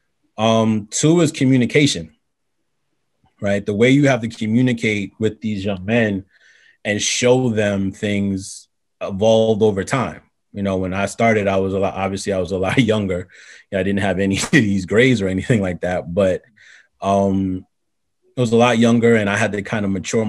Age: 30-49